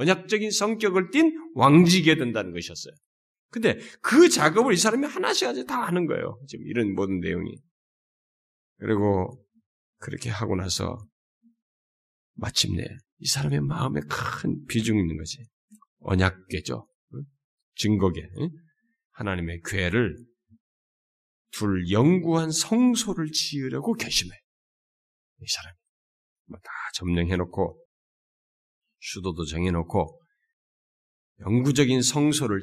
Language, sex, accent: Korean, male, native